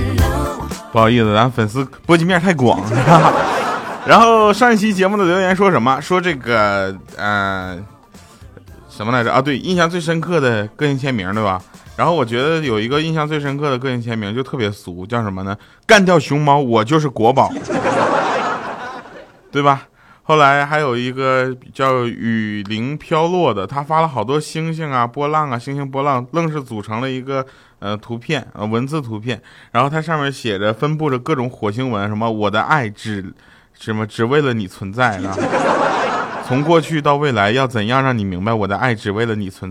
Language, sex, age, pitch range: Chinese, male, 20-39, 110-155 Hz